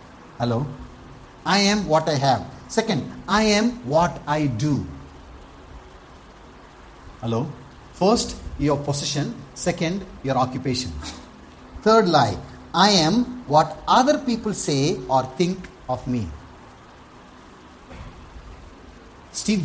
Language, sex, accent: English, male, Indian